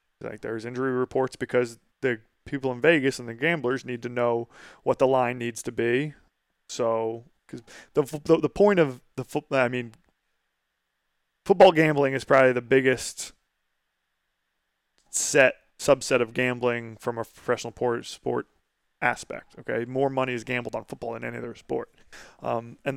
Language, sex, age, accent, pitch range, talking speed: English, male, 20-39, American, 120-140 Hz, 155 wpm